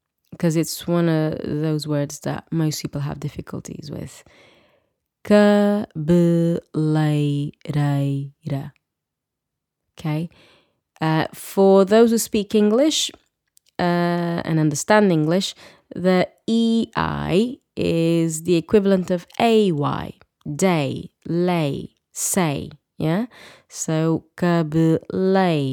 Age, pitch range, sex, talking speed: 20-39, 150-205 Hz, female, 80 wpm